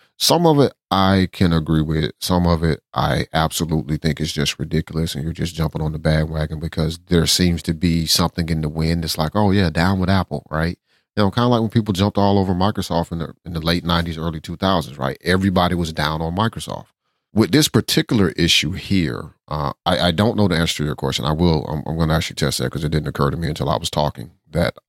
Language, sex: English, male